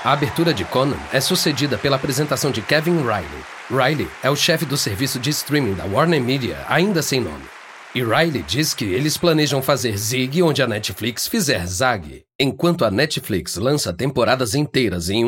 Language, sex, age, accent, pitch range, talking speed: Portuguese, male, 40-59, Brazilian, 110-150 Hz, 175 wpm